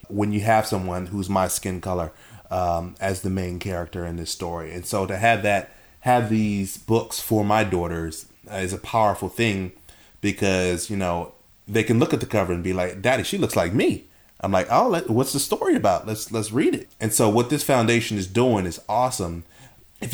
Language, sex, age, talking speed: English, male, 30-49, 210 wpm